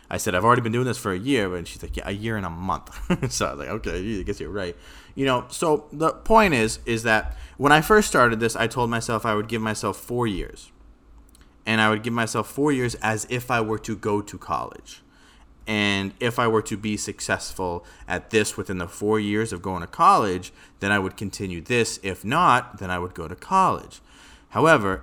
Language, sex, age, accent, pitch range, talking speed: English, male, 30-49, American, 90-125 Hz, 230 wpm